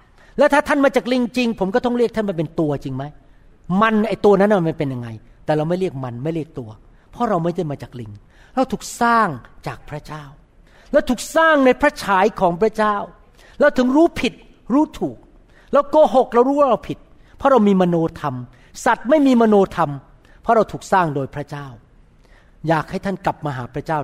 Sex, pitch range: male, 140-215 Hz